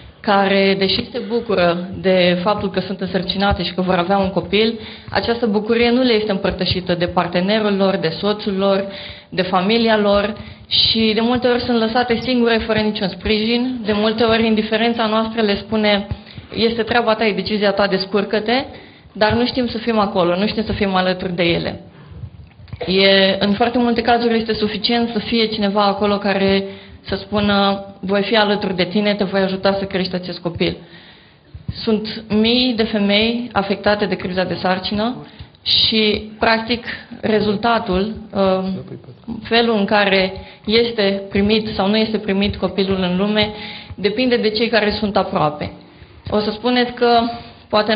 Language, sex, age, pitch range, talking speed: Romanian, female, 20-39, 190-220 Hz, 160 wpm